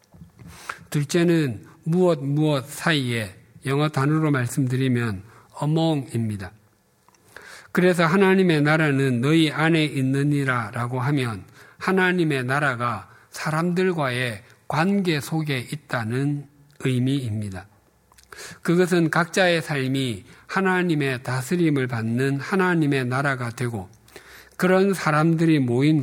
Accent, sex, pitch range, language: native, male, 120-160 Hz, Korean